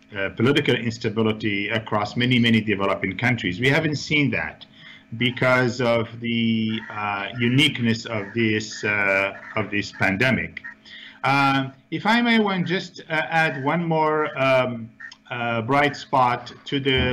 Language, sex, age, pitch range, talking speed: English, male, 50-69, 115-145 Hz, 135 wpm